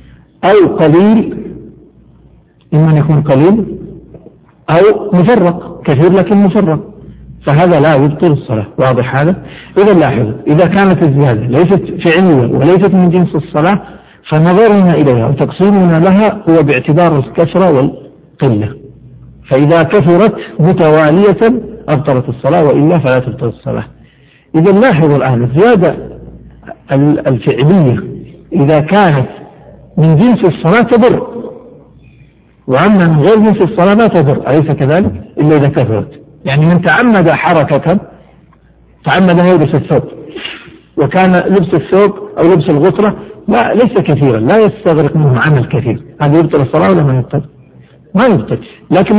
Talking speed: 120 wpm